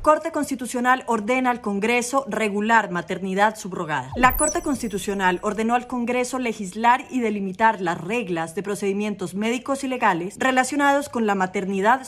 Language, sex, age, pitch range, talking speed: Spanish, female, 30-49, 200-260 Hz, 140 wpm